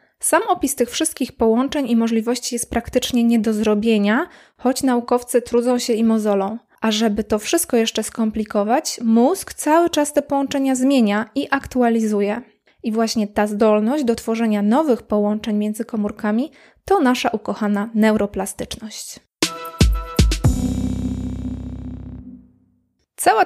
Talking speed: 120 wpm